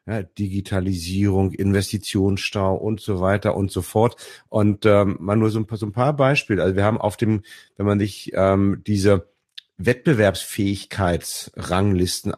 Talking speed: 135 wpm